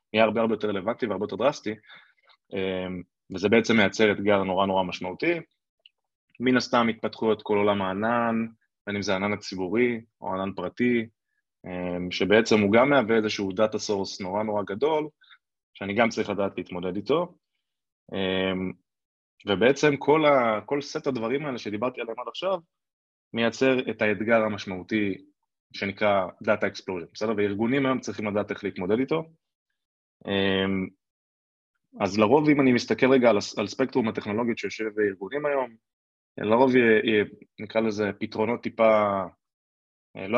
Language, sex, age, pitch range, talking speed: Hebrew, male, 20-39, 100-125 Hz, 135 wpm